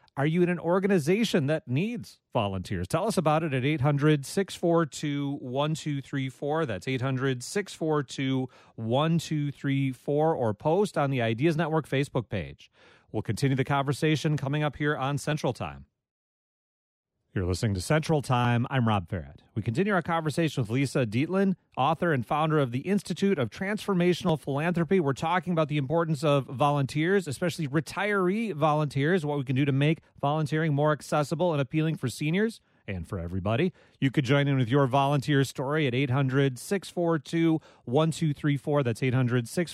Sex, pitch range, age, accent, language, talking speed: male, 130-165 Hz, 40-59, American, English, 145 wpm